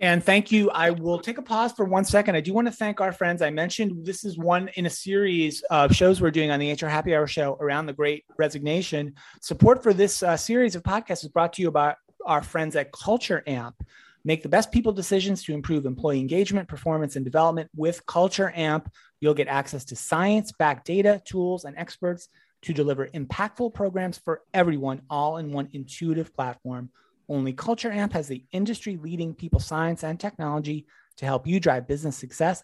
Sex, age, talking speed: male, 30-49, 200 wpm